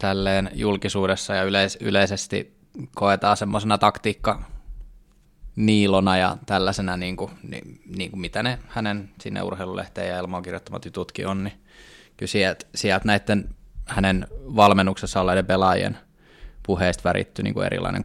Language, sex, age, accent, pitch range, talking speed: Finnish, male, 20-39, native, 90-100 Hz, 115 wpm